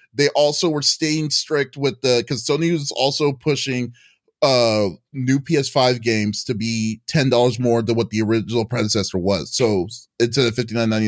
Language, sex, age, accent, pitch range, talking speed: English, male, 30-49, American, 115-135 Hz, 175 wpm